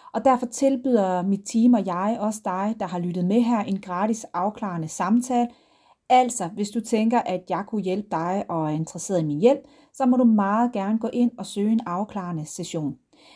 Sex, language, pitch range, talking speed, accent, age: female, Danish, 180-230 Hz, 200 wpm, native, 30-49